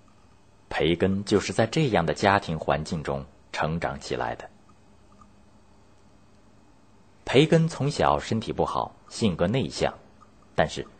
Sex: male